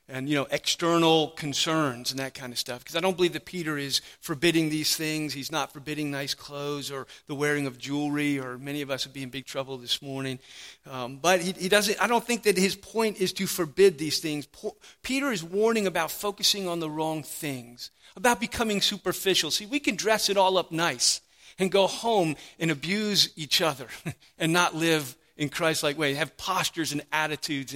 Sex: male